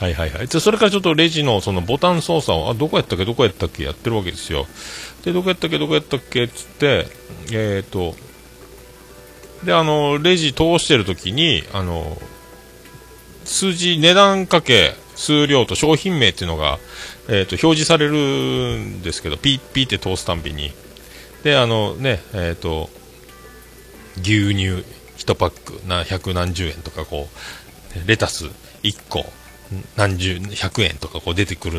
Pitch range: 90-150 Hz